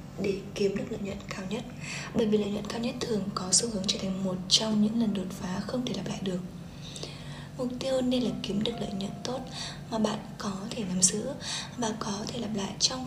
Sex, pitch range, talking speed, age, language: female, 185-220 Hz, 235 wpm, 10-29, Vietnamese